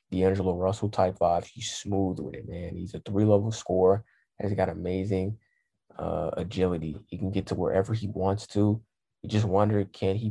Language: English